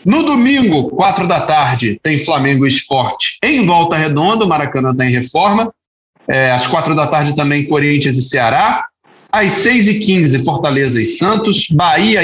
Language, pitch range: Portuguese, 145-200 Hz